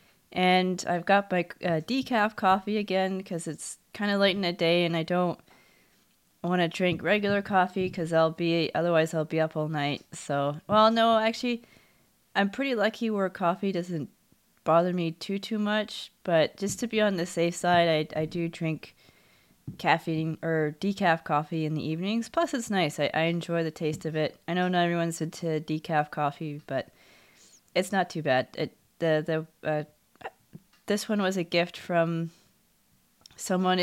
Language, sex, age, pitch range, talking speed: English, female, 20-39, 160-195 Hz, 175 wpm